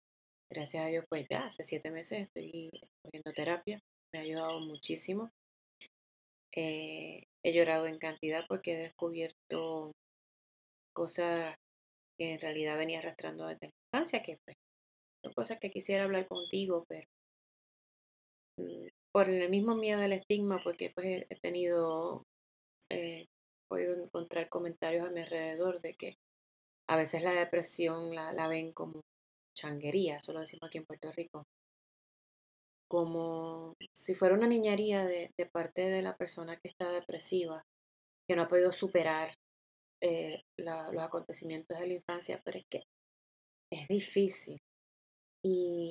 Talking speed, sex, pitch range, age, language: 140 wpm, female, 155-180 Hz, 30-49, Spanish